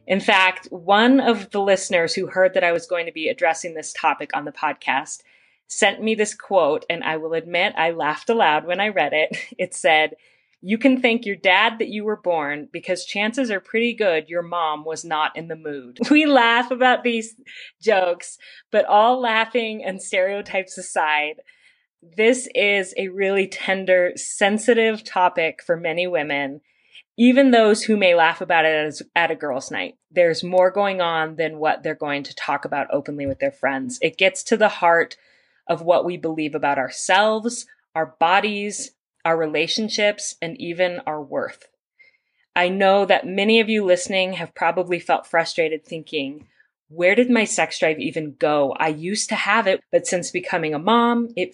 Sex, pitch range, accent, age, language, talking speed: female, 160-220 Hz, American, 30-49, English, 180 wpm